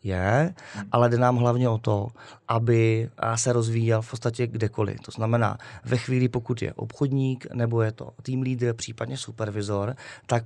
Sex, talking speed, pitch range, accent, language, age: male, 160 wpm, 110-125 Hz, native, Czech, 20-39